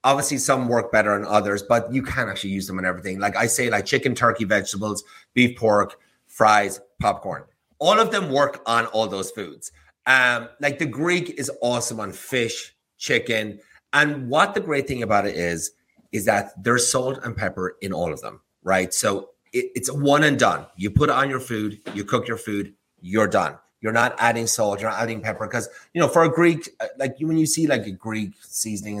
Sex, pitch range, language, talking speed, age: male, 100-130 Hz, English, 210 wpm, 30-49